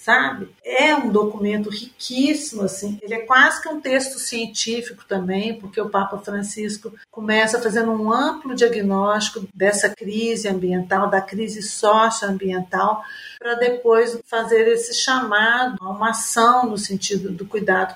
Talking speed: 135 wpm